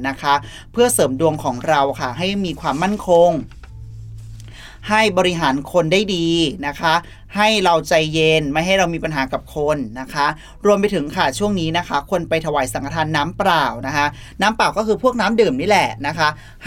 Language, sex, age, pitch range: Thai, male, 30-49, 140-180 Hz